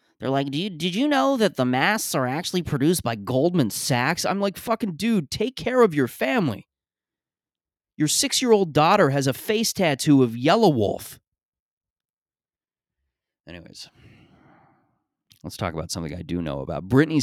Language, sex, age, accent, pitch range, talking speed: English, male, 30-49, American, 95-145 Hz, 150 wpm